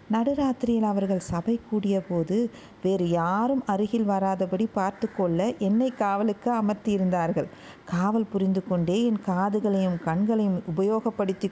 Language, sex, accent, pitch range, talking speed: Tamil, female, native, 180-230 Hz, 105 wpm